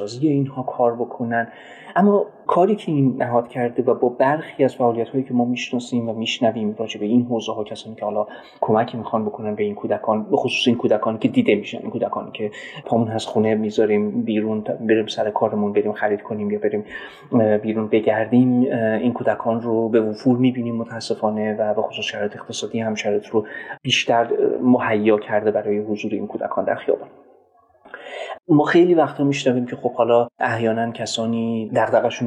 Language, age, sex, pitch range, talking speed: Persian, 30-49, male, 110-125 Hz, 175 wpm